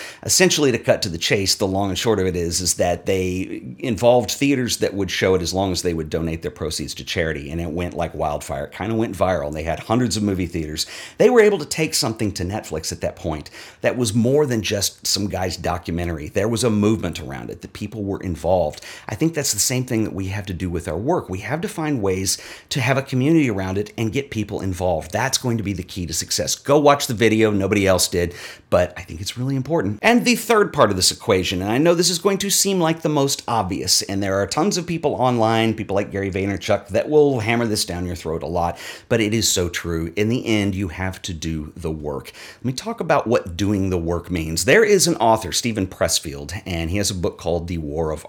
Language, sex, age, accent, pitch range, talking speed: English, male, 40-59, American, 90-125 Hz, 255 wpm